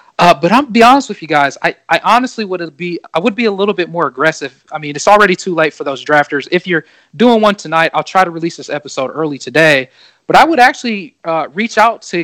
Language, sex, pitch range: English, male, 160-195 Hz